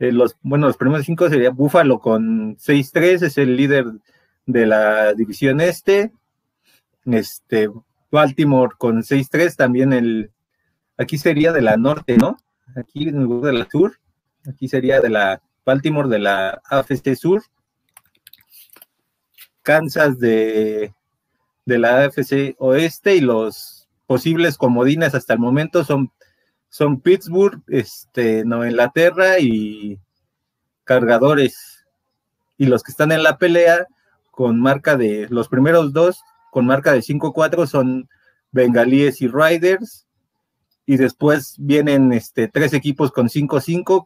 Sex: male